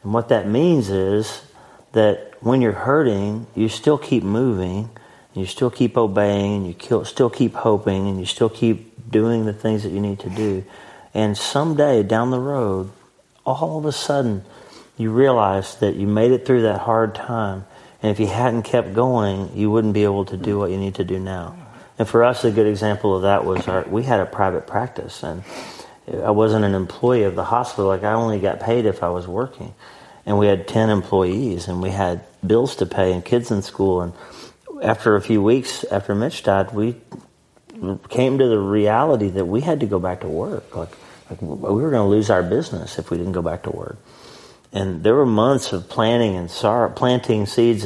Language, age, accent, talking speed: English, 40-59, American, 210 wpm